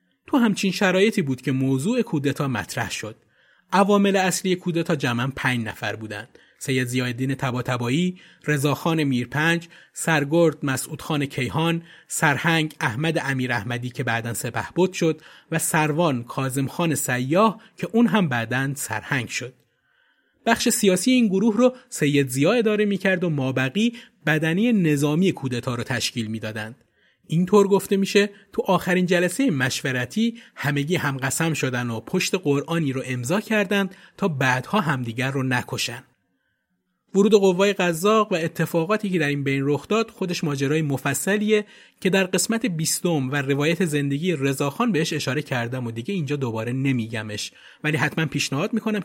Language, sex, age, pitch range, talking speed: Persian, male, 30-49, 130-190 Hz, 145 wpm